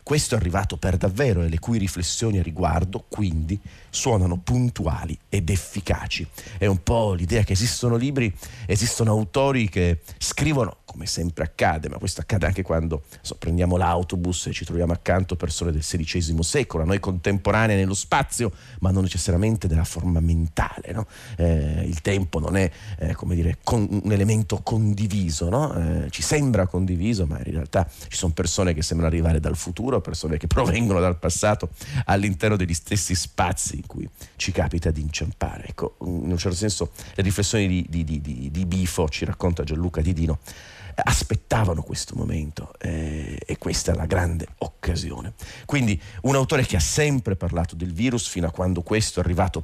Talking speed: 170 wpm